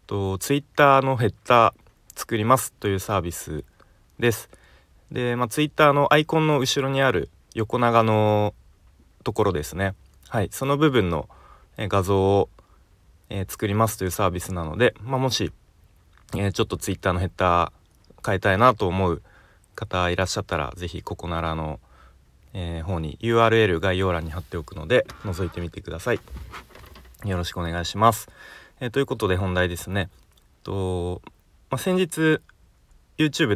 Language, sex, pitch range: Japanese, male, 85-115 Hz